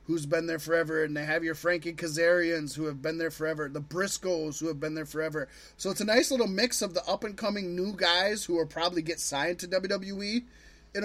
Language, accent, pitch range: English, American, 165-205 Hz